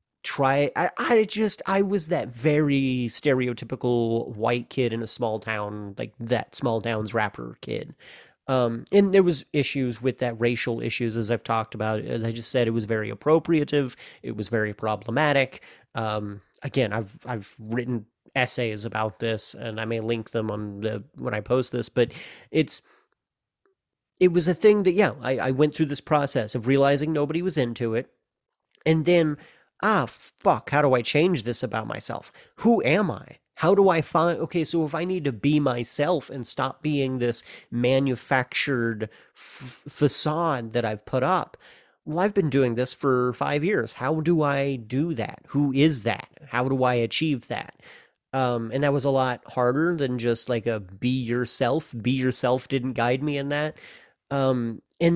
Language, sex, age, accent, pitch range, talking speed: English, male, 30-49, American, 115-150 Hz, 180 wpm